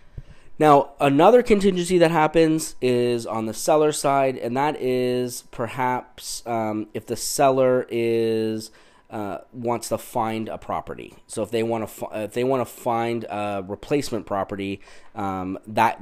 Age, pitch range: 20-39, 100-130 Hz